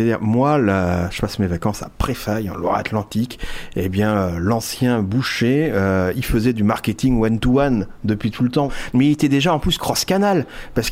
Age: 40-59